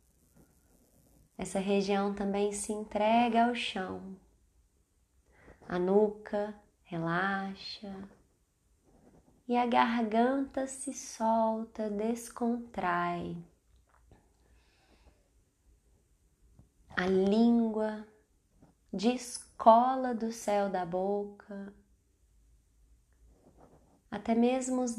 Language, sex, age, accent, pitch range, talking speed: Portuguese, female, 20-39, Brazilian, 185-220 Hz, 60 wpm